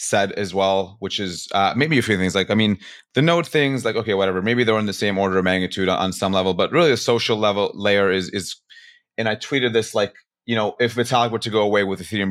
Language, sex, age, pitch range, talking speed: English, male, 30-49, 95-125 Hz, 265 wpm